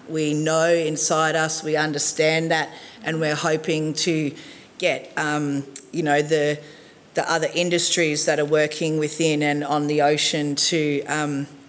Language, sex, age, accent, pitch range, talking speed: English, female, 40-59, Australian, 150-165 Hz, 150 wpm